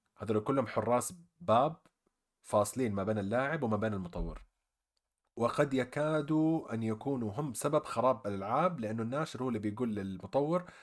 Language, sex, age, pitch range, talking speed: Arabic, male, 30-49, 100-140 Hz, 140 wpm